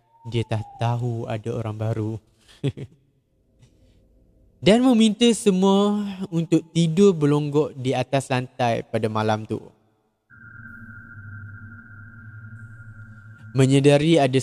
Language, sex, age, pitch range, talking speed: Malay, male, 20-39, 115-170 Hz, 85 wpm